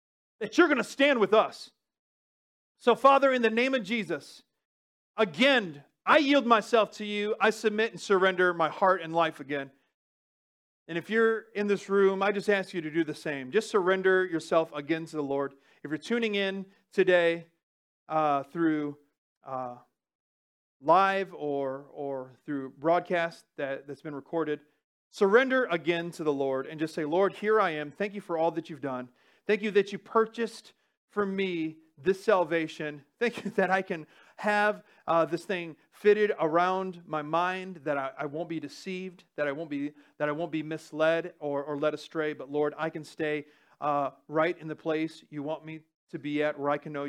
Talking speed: 185 wpm